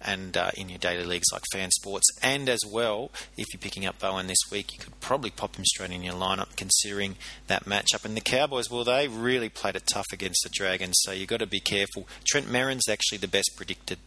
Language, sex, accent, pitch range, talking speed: English, male, Australian, 95-120 Hz, 235 wpm